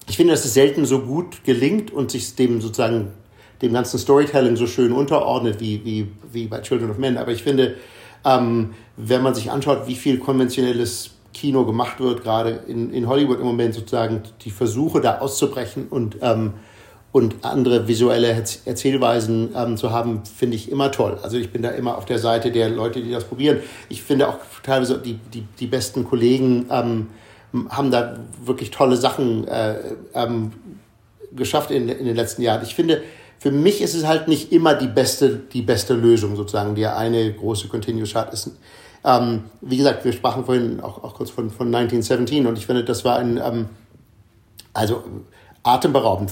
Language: German